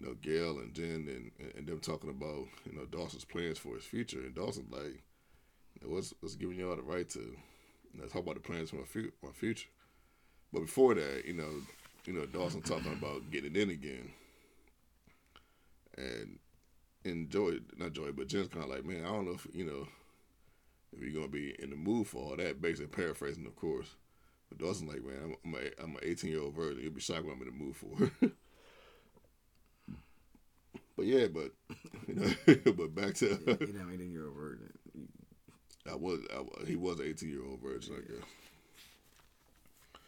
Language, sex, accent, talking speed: English, male, American, 185 wpm